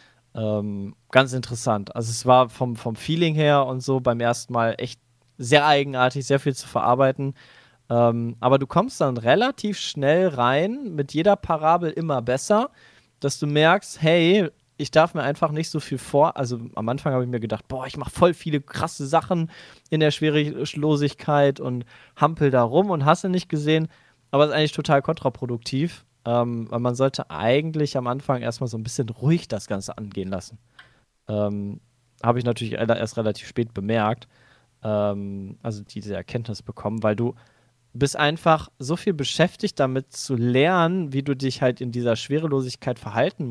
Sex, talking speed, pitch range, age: male, 170 wpm, 120-155 Hz, 20-39